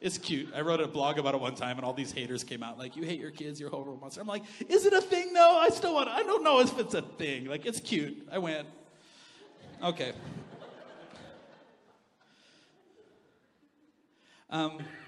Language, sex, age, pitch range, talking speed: English, male, 40-59, 155-225 Hz, 195 wpm